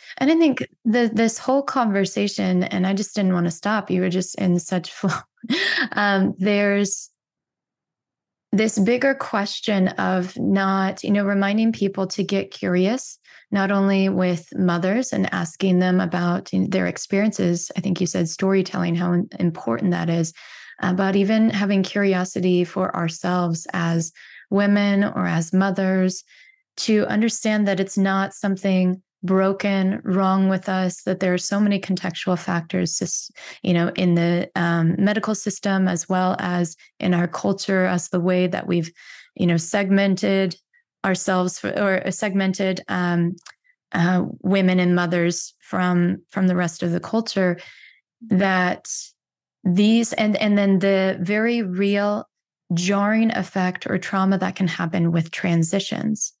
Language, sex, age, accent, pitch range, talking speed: English, female, 20-39, American, 180-205 Hz, 145 wpm